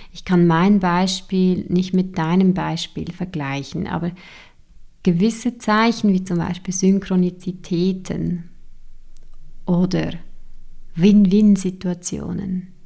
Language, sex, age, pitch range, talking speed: German, female, 30-49, 170-190 Hz, 85 wpm